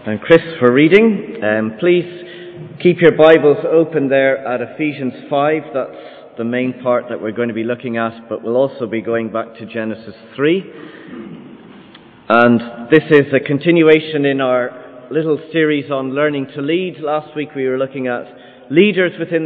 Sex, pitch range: male, 110-145 Hz